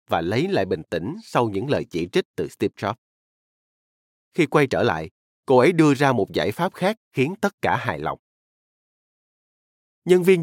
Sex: male